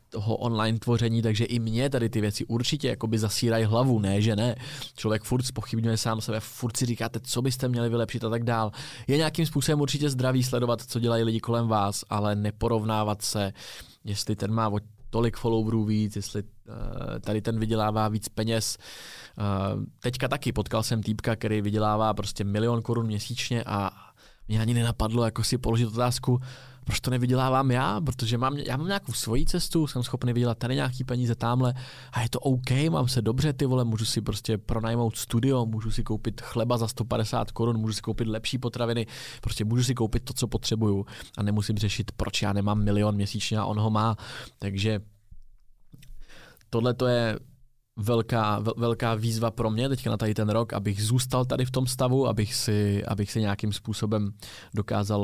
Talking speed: 180 wpm